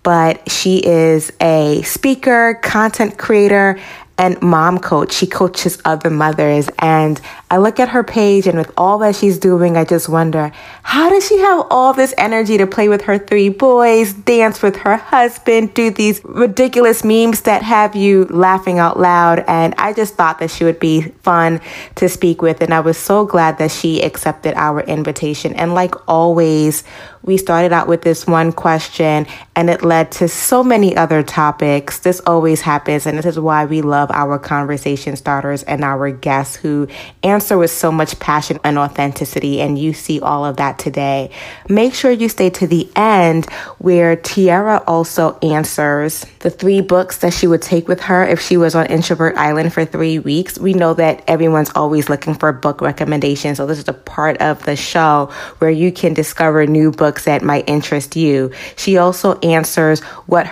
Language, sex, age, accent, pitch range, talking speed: English, female, 20-39, American, 155-190 Hz, 185 wpm